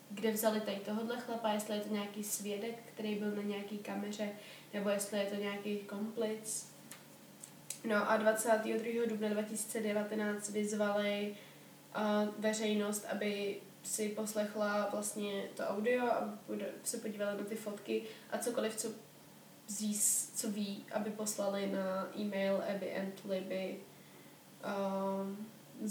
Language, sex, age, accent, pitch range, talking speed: Czech, female, 20-39, native, 205-220 Hz, 125 wpm